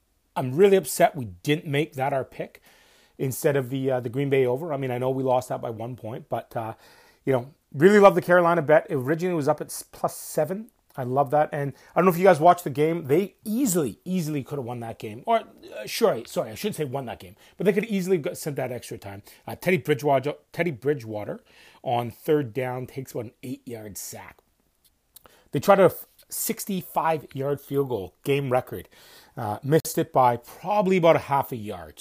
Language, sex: English, male